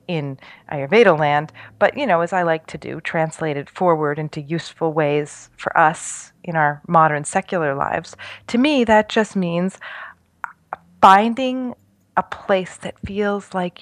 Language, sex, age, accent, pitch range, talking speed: English, female, 30-49, American, 170-220 Hz, 150 wpm